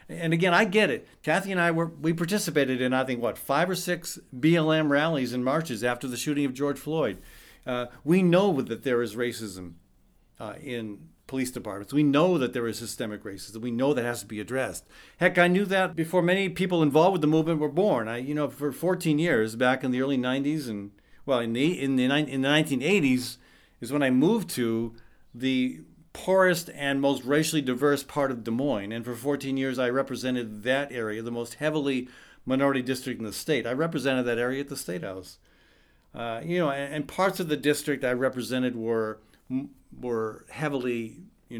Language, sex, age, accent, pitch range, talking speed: English, male, 50-69, American, 125-160 Hz, 200 wpm